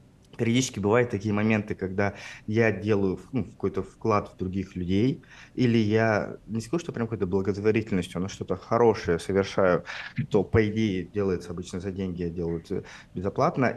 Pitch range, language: 95-115 Hz, Russian